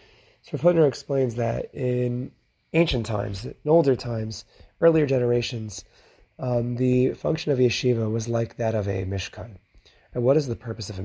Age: 30-49